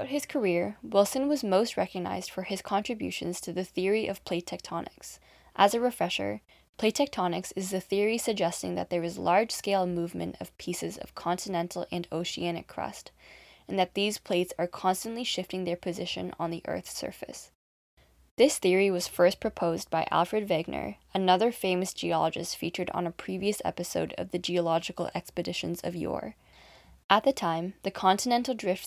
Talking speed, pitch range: 160 wpm, 170-200 Hz